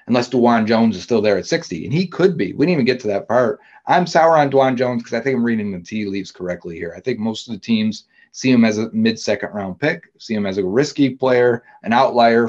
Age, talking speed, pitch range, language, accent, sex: 30-49, 265 wpm, 105-130 Hz, English, American, male